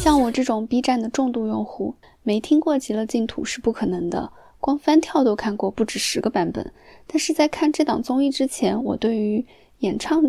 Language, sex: Chinese, female